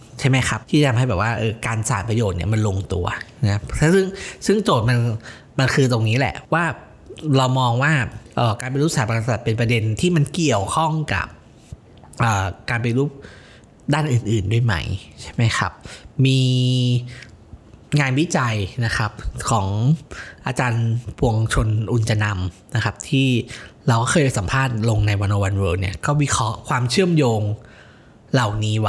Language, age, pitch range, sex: Thai, 20-39, 105-135 Hz, male